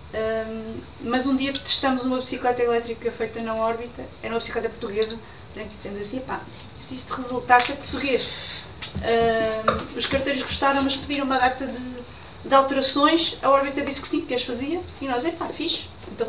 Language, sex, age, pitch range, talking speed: Portuguese, female, 20-39, 230-265 Hz, 175 wpm